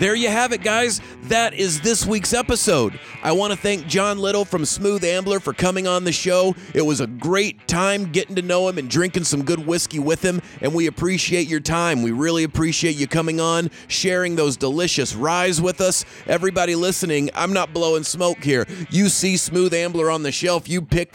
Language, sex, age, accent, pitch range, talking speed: English, male, 30-49, American, 135-175 Hz, 205 wpm